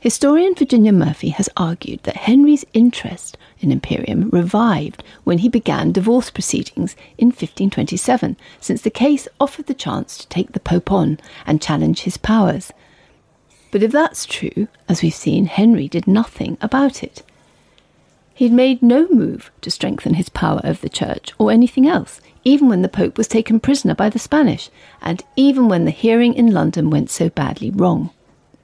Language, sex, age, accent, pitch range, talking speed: English, female, 40-59, British, 190-250 Hz, 170 wpm